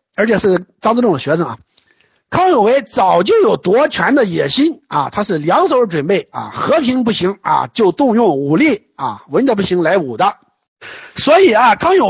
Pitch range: 200-290 Hz